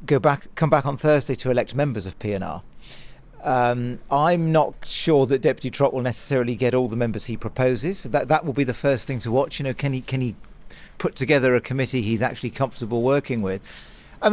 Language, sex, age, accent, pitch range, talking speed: English, male, 40-59, British, 125-155 Hz, 220 wpm